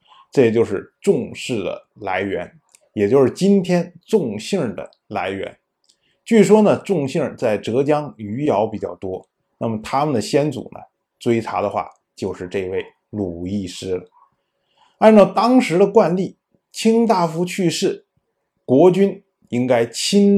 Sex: male